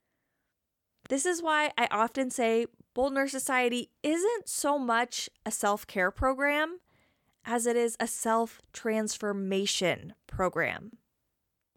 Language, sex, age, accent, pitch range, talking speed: English, female, 20-39, American, 210-270 Hz, 105 wpm